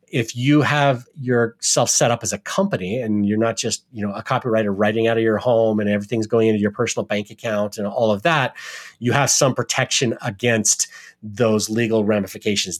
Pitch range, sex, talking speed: 100-115 Hz, male, 195 wpm